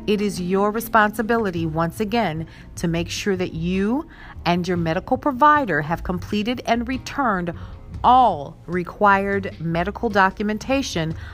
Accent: American